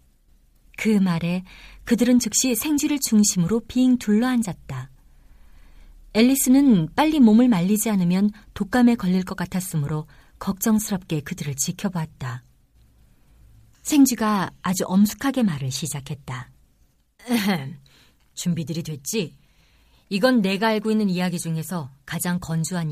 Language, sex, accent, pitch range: Korean, female, native, 140-210 Hz